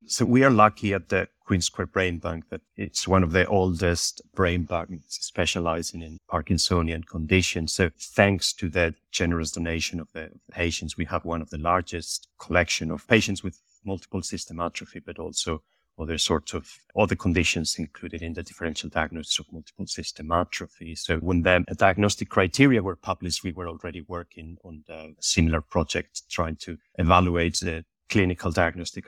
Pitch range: 80-95 Hz